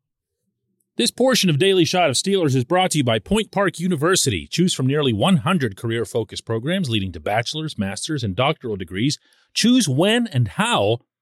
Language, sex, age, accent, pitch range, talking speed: English, male, 40-59, American, 95-155 Hz, 170 wpm